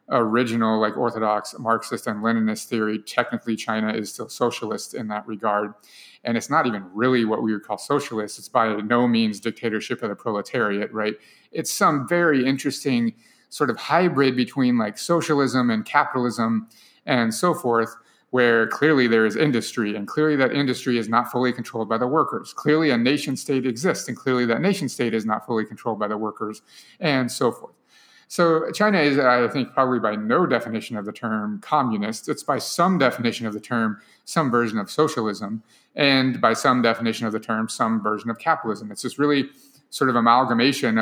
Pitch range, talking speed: 110-135 Hz, 180 wpm